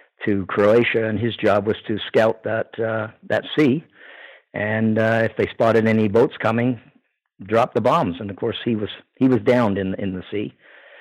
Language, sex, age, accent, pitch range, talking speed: English, male, 50-69, American, 105-120 Hz, 190 wpm